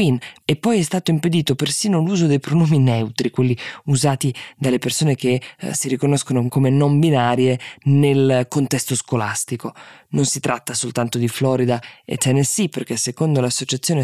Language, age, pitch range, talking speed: Italian, 20-39, 125-150 Hz, 150 wpm